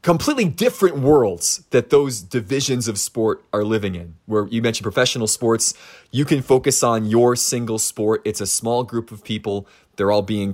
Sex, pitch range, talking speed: male, 105-130 Hz, 180 wpm